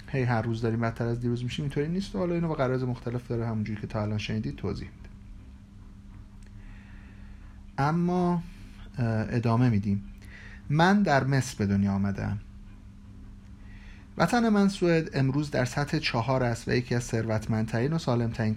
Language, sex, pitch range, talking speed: Persian, male, 100-145 Hz, 150 wpm